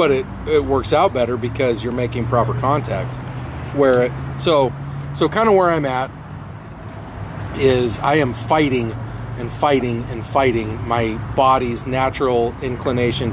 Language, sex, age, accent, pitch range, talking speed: English, male, 30-49, American, 115-140 Hz, 145 wpm